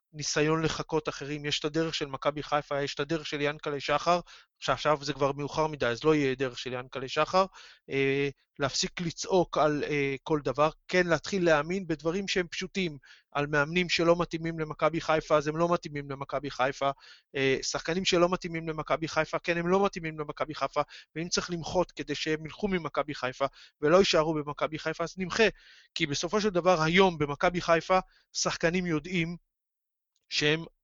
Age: 20-39